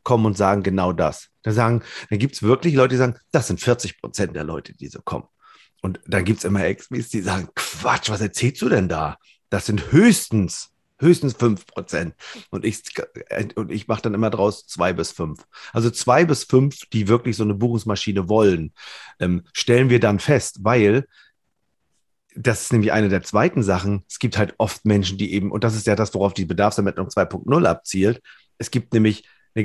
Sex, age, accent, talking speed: male, 40-59, German, 200 wpm